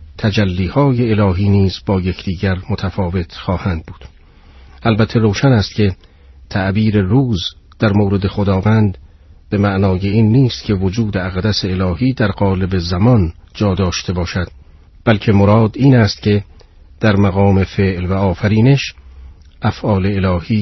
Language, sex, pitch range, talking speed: Persian, male, 90-105 Hz, 125 wpm